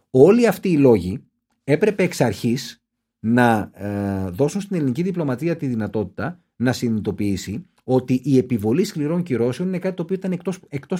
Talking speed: 145 wpm